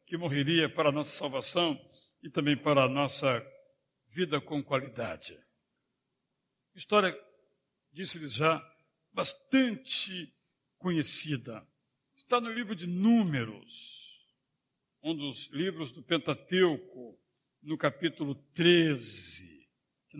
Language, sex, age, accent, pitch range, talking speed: Portuguese, male, 60-79, Brazilian, 145-205 Hz, 100 wpm